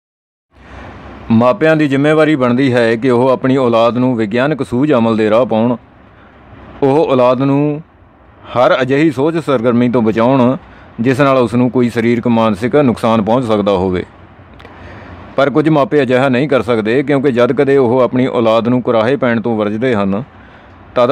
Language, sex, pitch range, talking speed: Punjabi, male, 110-130 Hz, 160 wpm